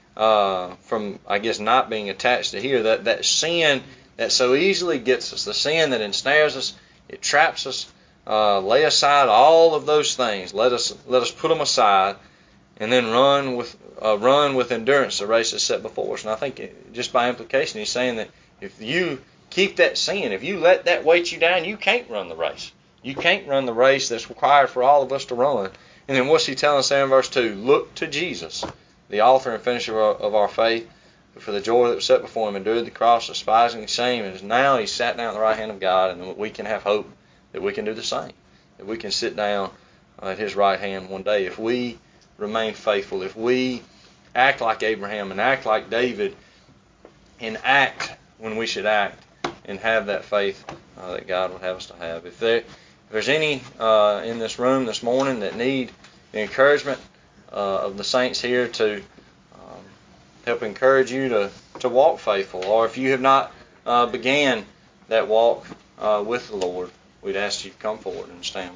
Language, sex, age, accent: English, male, 30-49, American